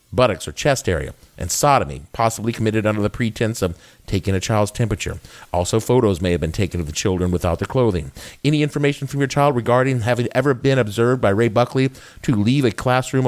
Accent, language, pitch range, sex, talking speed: American, English, 110-155 Hz, male, 205 wpm